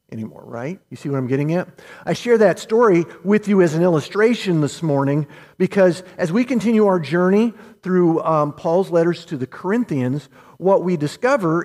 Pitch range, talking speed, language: 150-205 Hz, 180 wpm, English